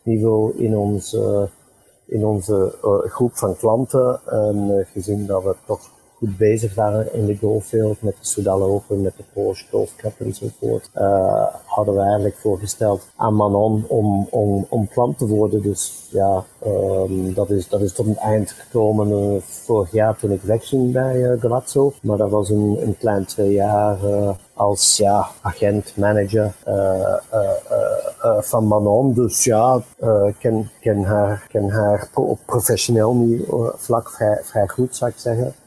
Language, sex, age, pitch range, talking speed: Dutch, male, 50-69, 105-120 Hz, 175 wpm